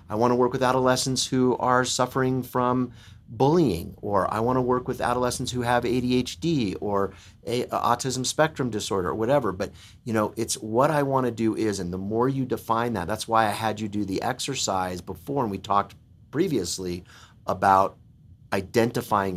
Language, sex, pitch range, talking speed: English, male, 100-125 Hz, 180 wpm